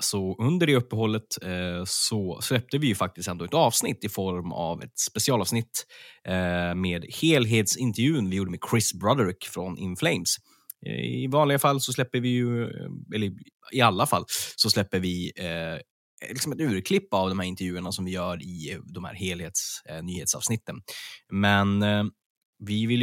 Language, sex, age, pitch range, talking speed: Swedish, male, 20-39, 90-120 Hz, 150 wpm